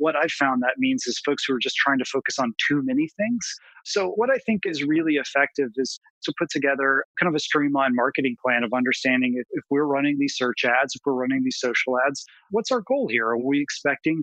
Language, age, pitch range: English, 30-49, 125-165 Hz